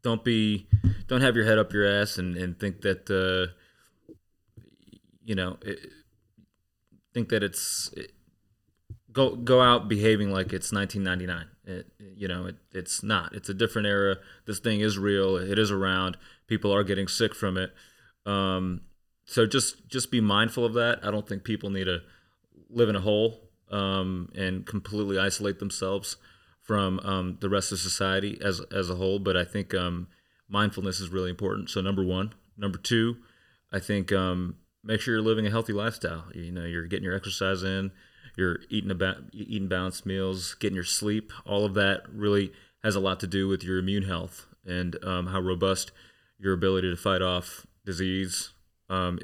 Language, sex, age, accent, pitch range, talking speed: English, male, 30-49, American, 95-105 Hz, 185 wpm